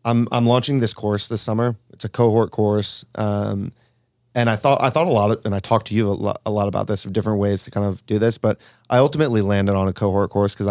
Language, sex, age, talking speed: English, male, 30-49, 270 wpm